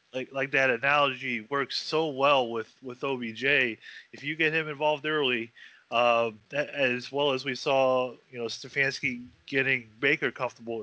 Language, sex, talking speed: English, male, 160 wpm